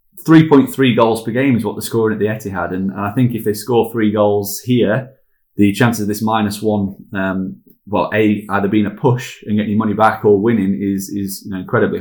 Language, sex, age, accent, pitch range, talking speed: English, male, 20-39, British, 100-120 Hz, 225 wpm